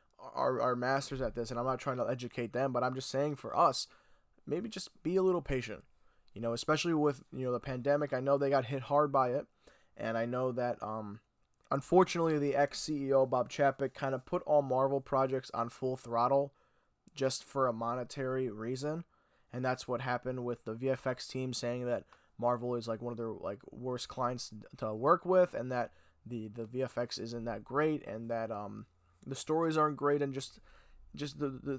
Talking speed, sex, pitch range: 195 wpm, male, 125-150 Hz